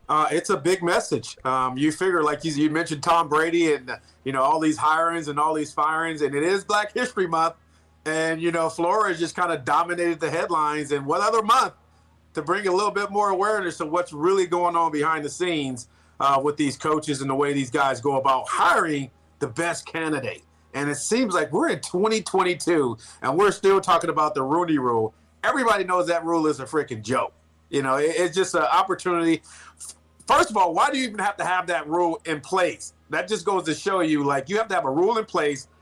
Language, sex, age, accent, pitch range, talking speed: English, male, 40-59, American, 145-180 Hz, 225 wpm